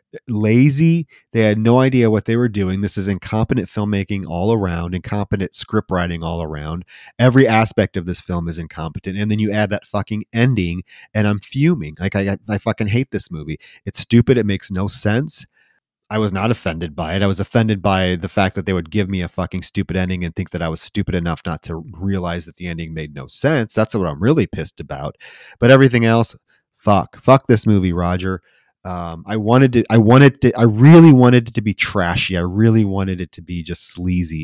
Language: English